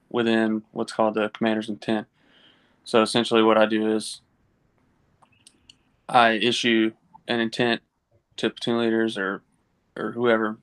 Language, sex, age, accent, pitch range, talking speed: English, male, 20-39, American, 110-120 Hz, 125 wpm